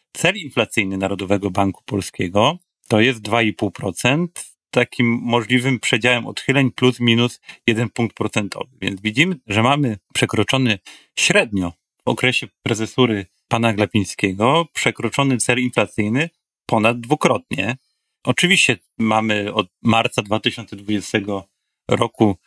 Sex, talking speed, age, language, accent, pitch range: male, 105 wpm, 40-59, Polish, native, 100-125 Hz